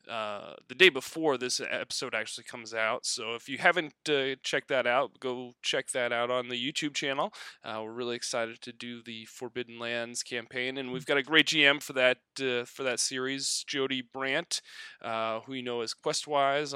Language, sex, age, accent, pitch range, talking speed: English, male, 20-39, American, 120-155 Hz, 195 wpm